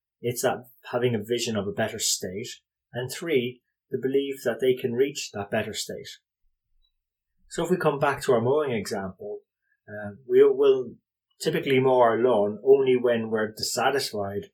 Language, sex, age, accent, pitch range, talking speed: English, male, 20-39, British, 105-135 Hz, 170 wpm